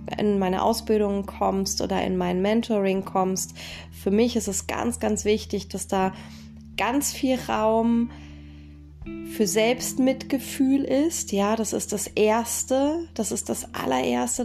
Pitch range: 195-225 Hz